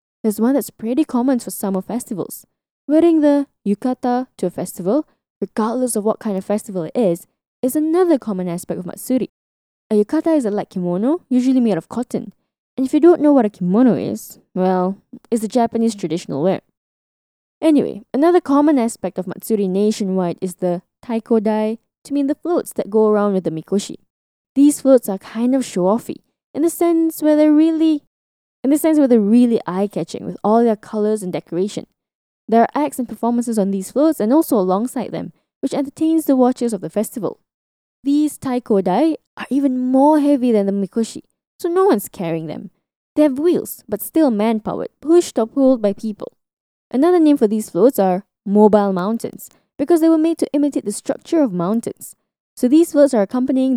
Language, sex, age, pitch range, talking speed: English, female, 10-29, 205-280 Hz, 185 wpm